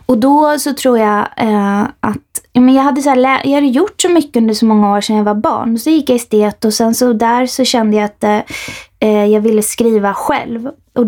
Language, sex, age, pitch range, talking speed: Swedish, female, 20-39, 210-245 Hz, 245 wpm